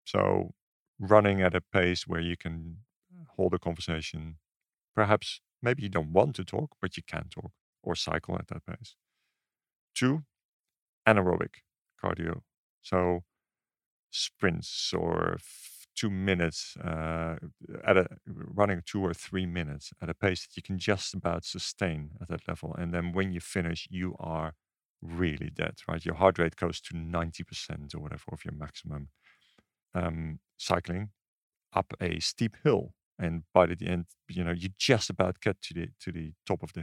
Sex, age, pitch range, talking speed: male, 50-69, 80-95 Hz, 165 wpm